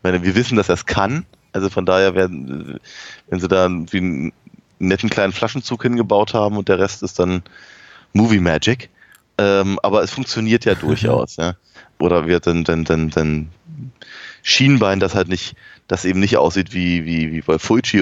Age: 20-39